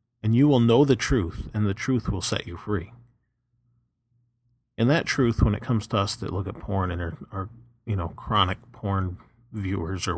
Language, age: English, 40-59